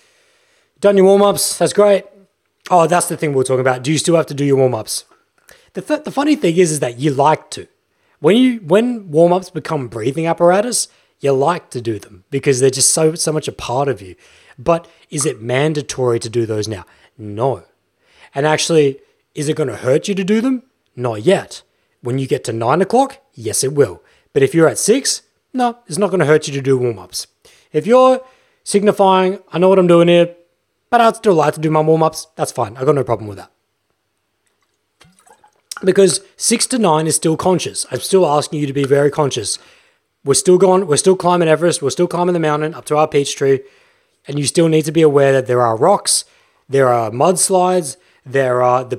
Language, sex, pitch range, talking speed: English, male, 135-190 Hz, 215 wpm